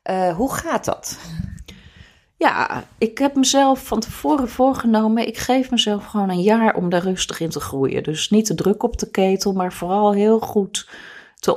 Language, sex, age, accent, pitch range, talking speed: Dutch, female, 40-59, Dutch, 165-220 Hz, 180 wpm